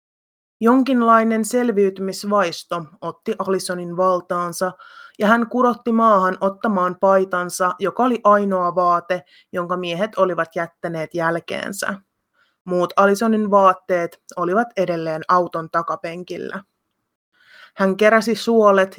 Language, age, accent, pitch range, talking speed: Finnish, 30-49, native, 175-215 Hz, 95 wpm